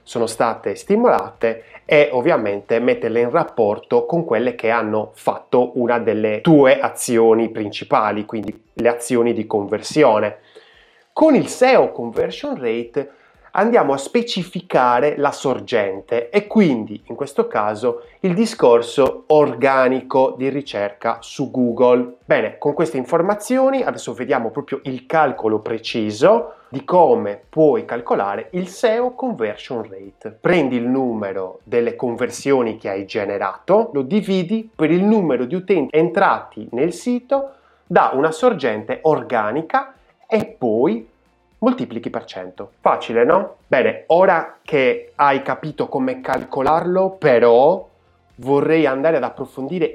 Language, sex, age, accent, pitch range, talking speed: Italian, male, 20-39, native, 115-185 Hz, 125 wpm